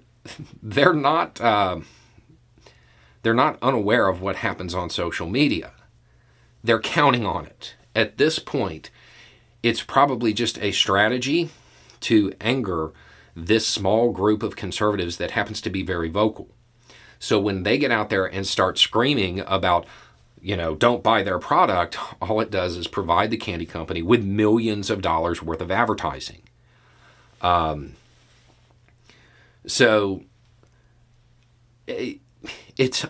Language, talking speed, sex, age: English, 130 wpm, male, 40-59